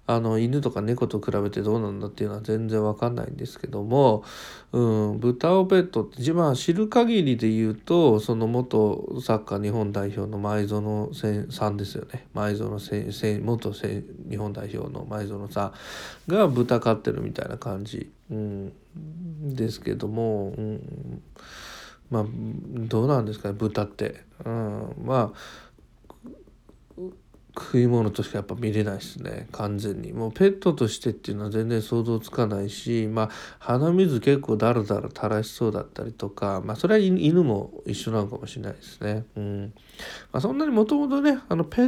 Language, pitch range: Japanese, 105-140 Hz